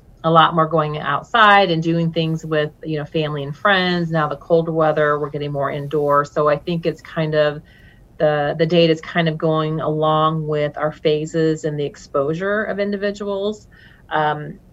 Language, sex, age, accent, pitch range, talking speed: English, female, 30-49, American, 150-165 Hz, 185 wpm